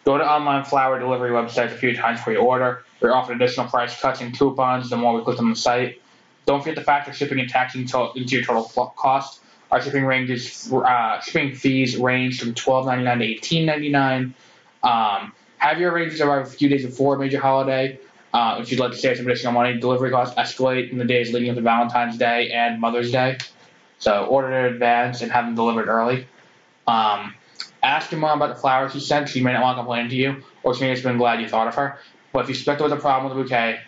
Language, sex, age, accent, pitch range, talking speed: English, male, 20-39, American, 120-135 Hz, 230 wpm